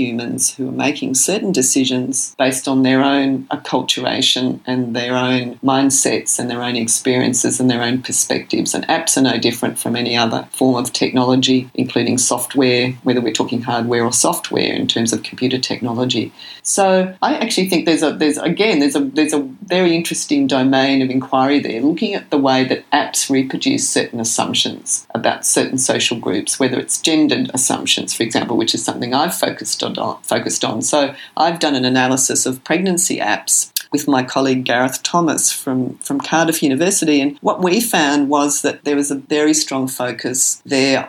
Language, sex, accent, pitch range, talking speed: English, female, Australian, 125-150 Hz, 180 wpm